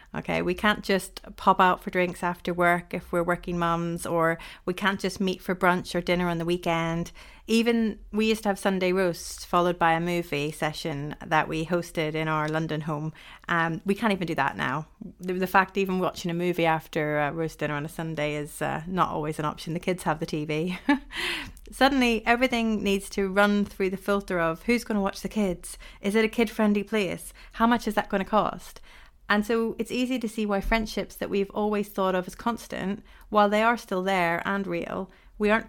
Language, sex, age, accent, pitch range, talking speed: English, female, 30-49, British, 175-220 Hz, 215 wpm